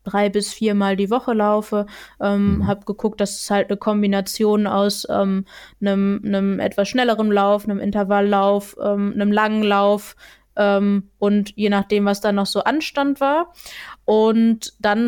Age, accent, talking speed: 20-39, German, 155 wpm